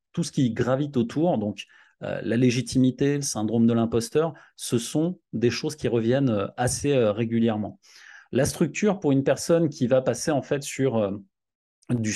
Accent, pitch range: French, 125-165 Hz